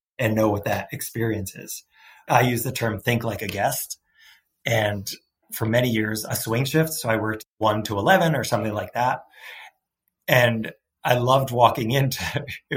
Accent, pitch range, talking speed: American, 105-125 Hz, 175 wpm